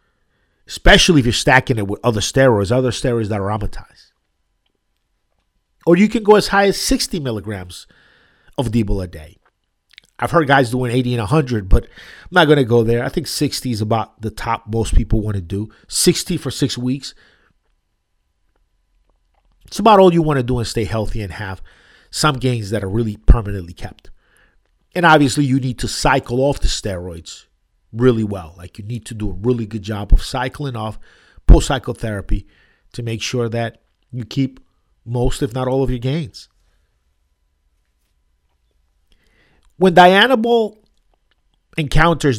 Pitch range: 100-140 Hz